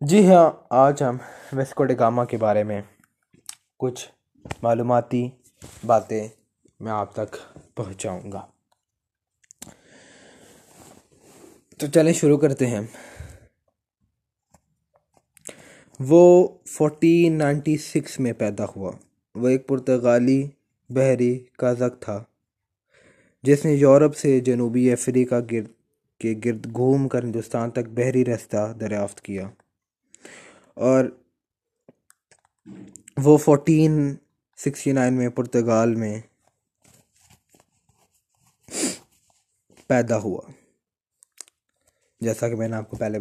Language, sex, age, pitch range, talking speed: Urdu, male, 20-39, 110-140 Hz, 95 wpm